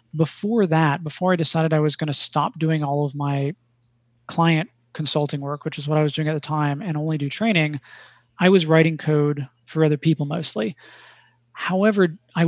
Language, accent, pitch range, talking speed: English, American, 145-165 Hz, 190 wpm